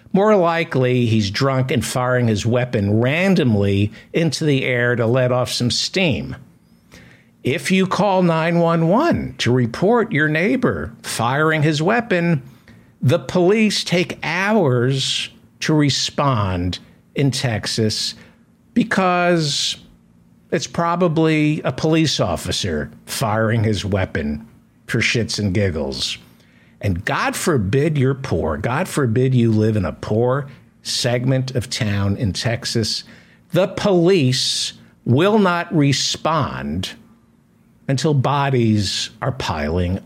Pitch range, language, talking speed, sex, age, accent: 115-170 Hz, English, 110 wpm, male, 60-79, American